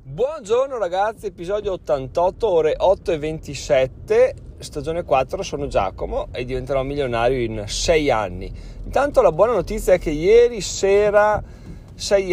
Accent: native